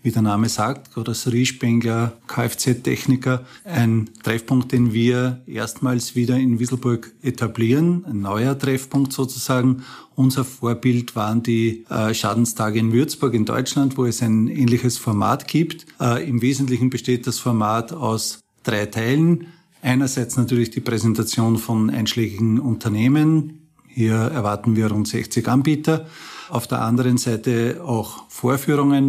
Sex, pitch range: male, 115-130 Hz